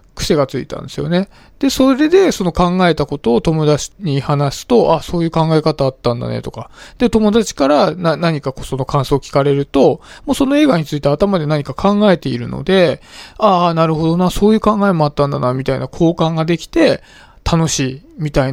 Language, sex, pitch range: Japanese, male, 140-190 Hz